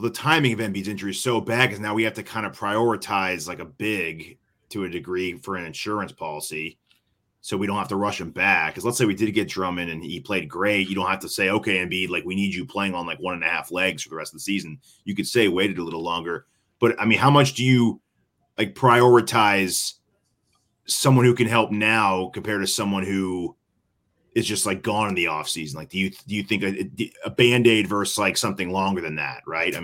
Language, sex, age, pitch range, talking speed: English, male, 30-49, 100-130 Hz, 240 wpm